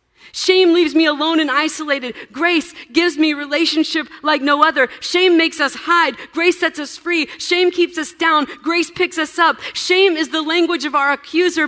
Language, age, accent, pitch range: English, 40-59, American, 205-305 Hz